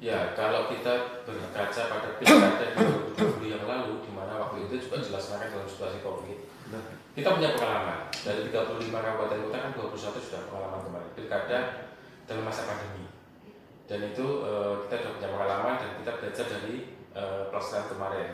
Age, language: 20-39, Indonesian